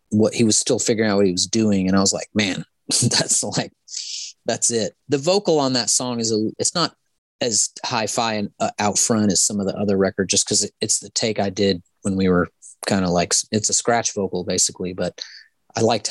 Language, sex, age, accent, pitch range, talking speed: English, male, 30-49, American, 95-120 Hz, 230 wpm